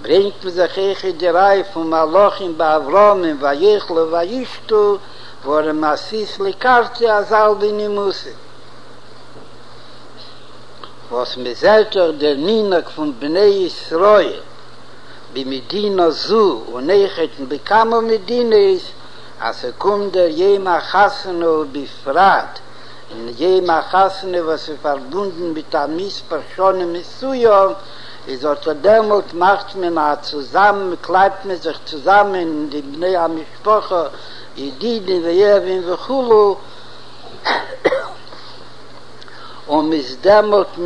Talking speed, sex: 80 wpm, male